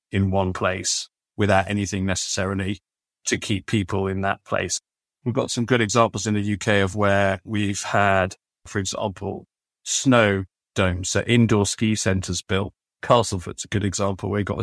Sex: male